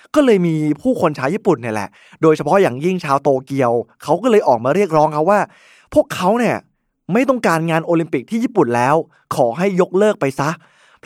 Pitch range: 140-185 Hz